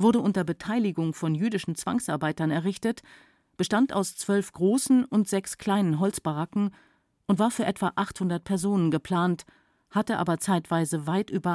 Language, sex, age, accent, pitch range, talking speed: German, female, 50-69, German, 155-205 Hz, 140 wpm